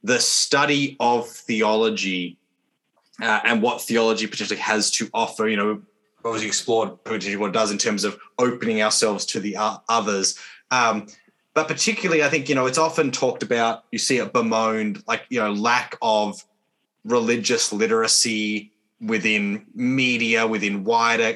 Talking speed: 145 wpm